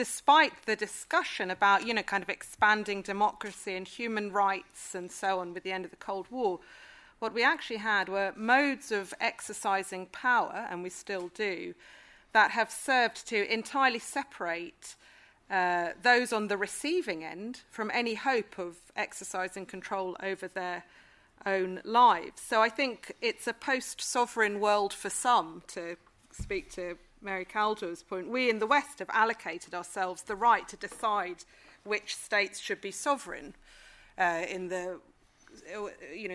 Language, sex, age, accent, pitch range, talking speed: English, female, 40-59, British, 185-235 Hz, 150 wpm